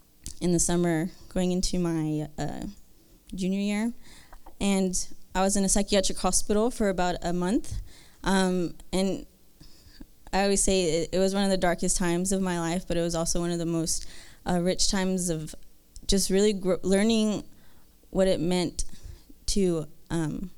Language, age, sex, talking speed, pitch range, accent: English, 20-39, female, 165 wpm, 160-190 Hz, American